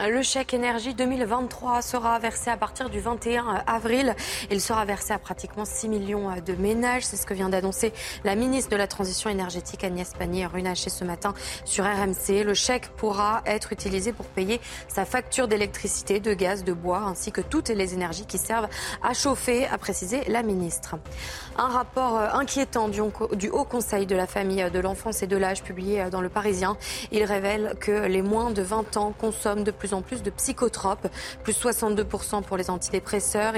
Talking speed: 180 wpm